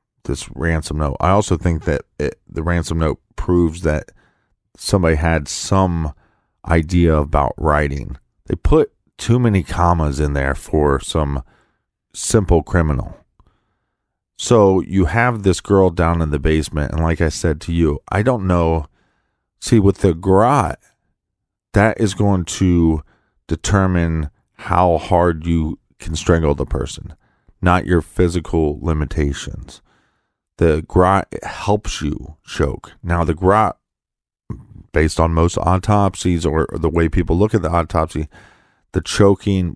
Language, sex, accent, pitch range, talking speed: English, male, American, 75-95 Hz, 135 wpm